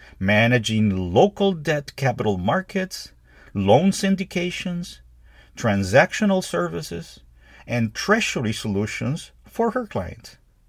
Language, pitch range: English, 100-155 Hz